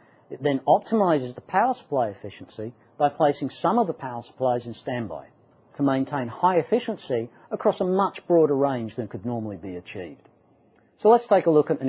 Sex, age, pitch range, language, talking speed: male, 40-59, 125-160 Hz, English, 185 wpm